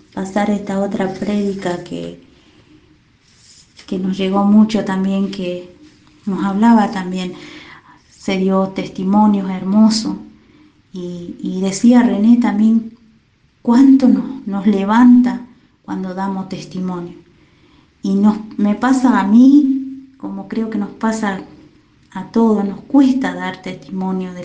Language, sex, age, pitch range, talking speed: Spanish, female, 30-49, 190-230 Hz, 120 wpm